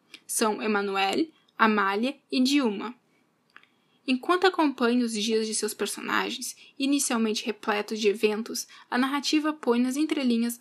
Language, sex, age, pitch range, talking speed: Portuguese, female, 10-29, 220-260 Hz, 120 wpm